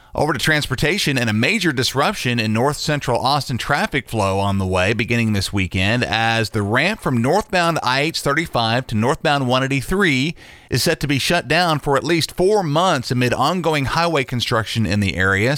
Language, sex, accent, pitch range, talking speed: English, male, American, 105-140 Hz, 180 wpm